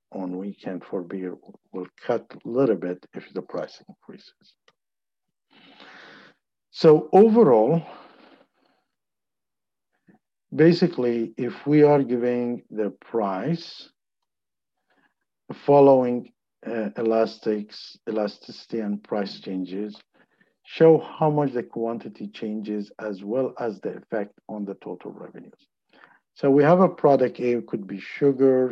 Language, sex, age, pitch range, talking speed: English, male, 50-69, 110-145 Hz, 110 wpm